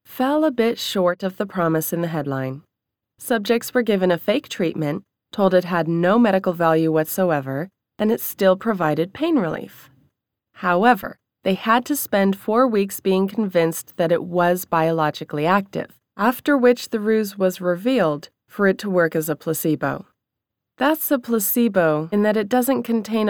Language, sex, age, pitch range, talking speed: English, female, 30-49, 160-230 Hz, 165 wpm